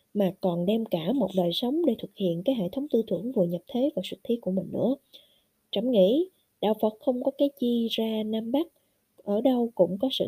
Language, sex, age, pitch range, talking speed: Vietnamese, female, 20-39, 195-270 Hz, 235 wpm